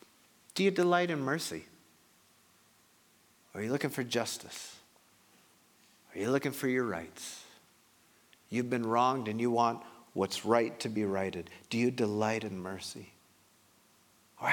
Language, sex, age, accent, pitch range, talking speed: English, male, 50-69, American, 105-165 Hz, 135 wpm